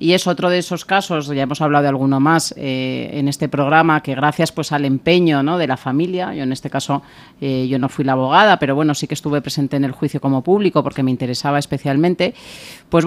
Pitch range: 135-160 Hz